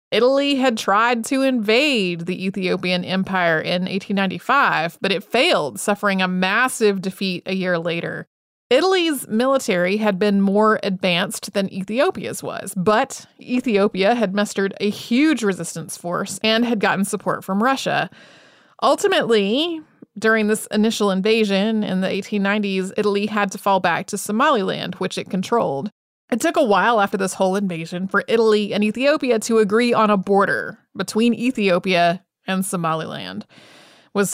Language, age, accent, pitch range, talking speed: English, 30-49, American, 190-235 Hz, 145 wpm